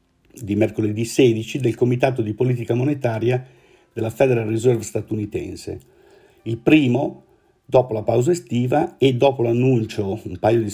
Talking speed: 135 wpm